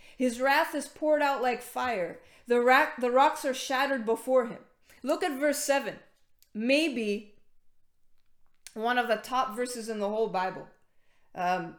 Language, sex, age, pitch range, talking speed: English, female, 30-49, 230-305 Hz, 155 wpm